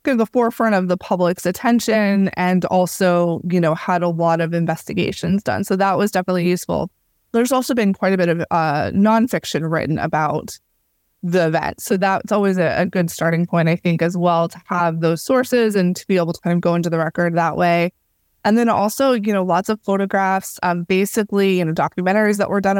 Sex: female